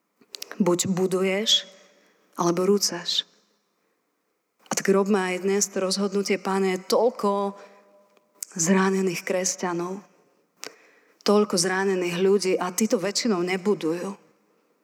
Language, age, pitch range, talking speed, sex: Slovak, 30-49, 180-200 Hz, 95 wpm, female